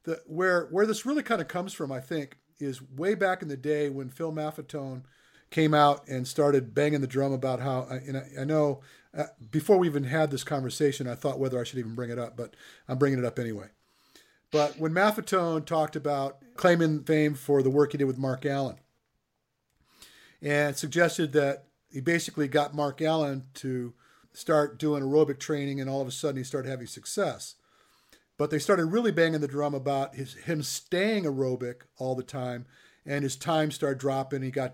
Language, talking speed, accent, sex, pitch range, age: English, 195 wpm, American, male, 130-155 Hz, 50-69